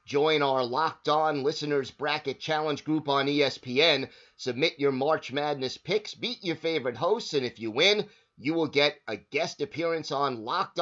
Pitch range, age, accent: 130-155 Hz, 30-49, American